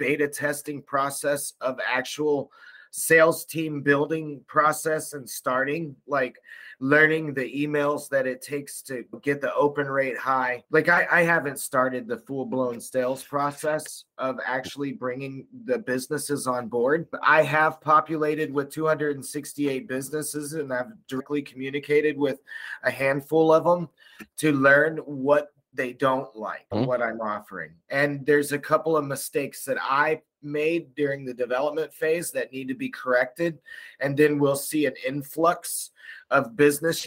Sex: male